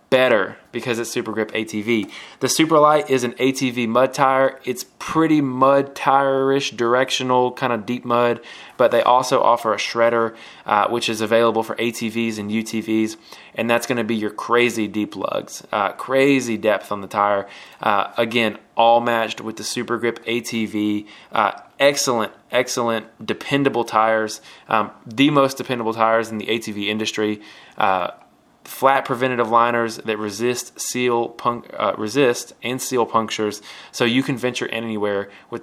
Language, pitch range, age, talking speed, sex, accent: English, 110-130 Hz, 20-39, 155 wpm, male, American